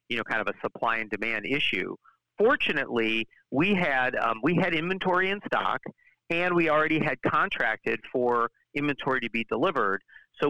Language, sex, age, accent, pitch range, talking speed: English, male, 40-59, American, 120-155 Hz, 165 wpm